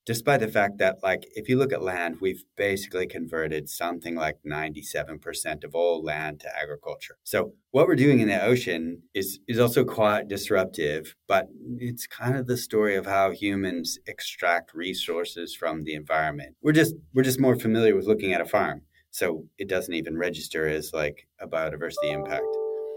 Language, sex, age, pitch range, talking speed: English, male, 30-49, 90-120 Hz, 180 wpm